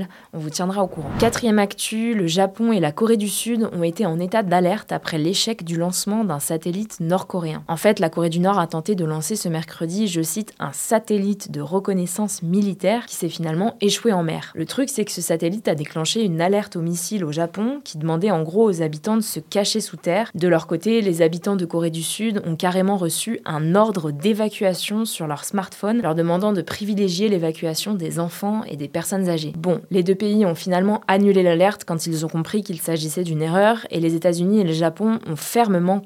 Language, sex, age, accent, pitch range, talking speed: French, female, 20-39, French, 165-210 Hz, 215 wpm